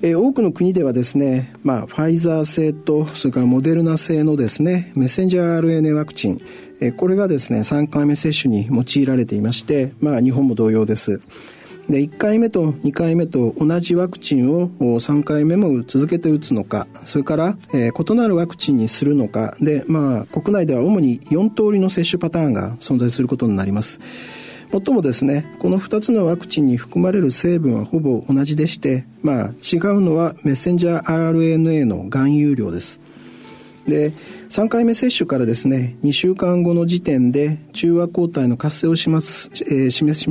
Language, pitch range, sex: Japanese, 130-170 Hz, male